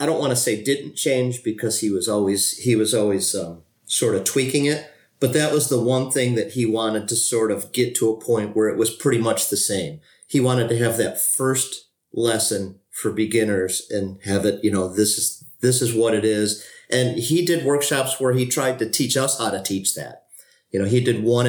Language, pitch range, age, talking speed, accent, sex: English, 105-125 Hz, 40-59, 230 wpm, American, male